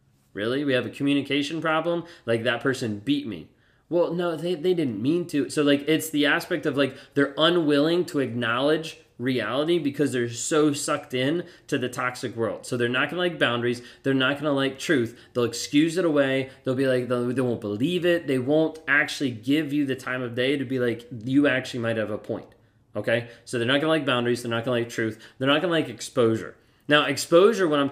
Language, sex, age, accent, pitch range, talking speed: English, male, 20-39, American, 120-150 Hz, 225 wpm